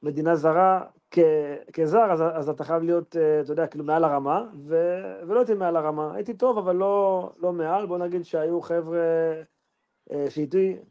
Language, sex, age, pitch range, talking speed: Hebrew, male, 30-49, 150-180 Hz, 175 wpm